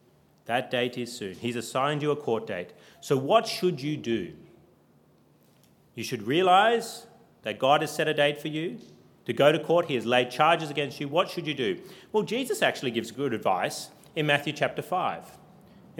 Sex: male